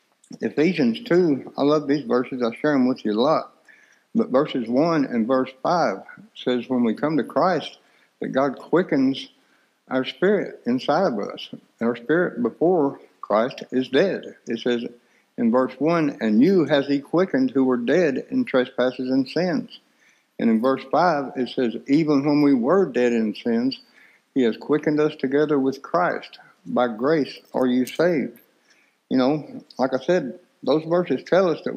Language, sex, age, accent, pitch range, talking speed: English, male, 60-79, American, 130-200 Hz, 175 wpm